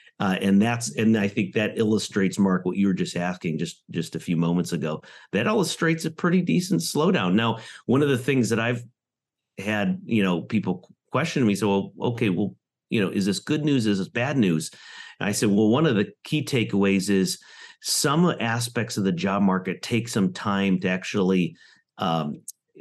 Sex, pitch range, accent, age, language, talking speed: male, 100-130 Hz, American, 50-69, English, 190 wpm